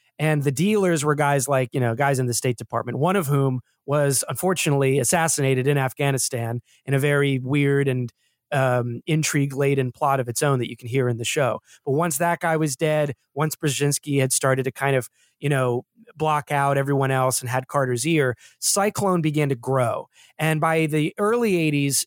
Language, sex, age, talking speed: English, male, 30-49, 195 wpm